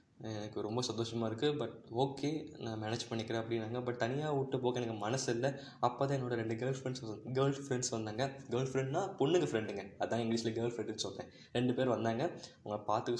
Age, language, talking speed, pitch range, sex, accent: 20-39, Tamil, 175 wpm, 115-145 Hz, male, native